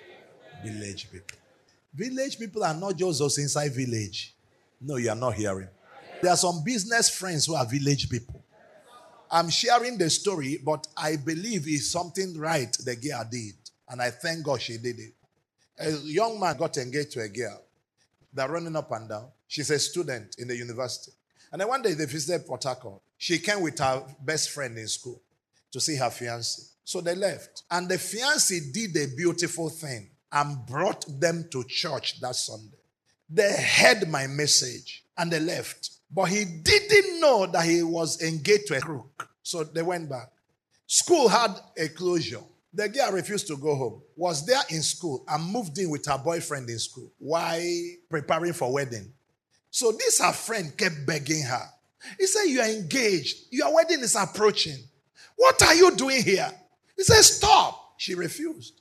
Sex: male